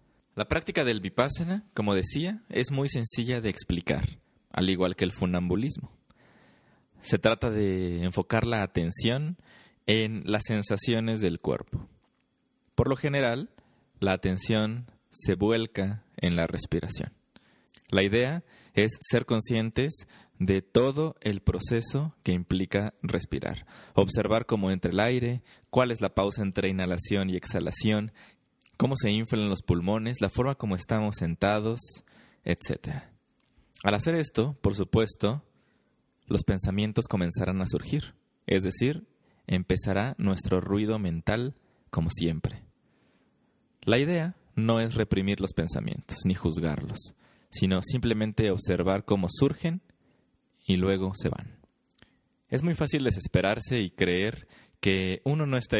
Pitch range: 95-120 Hz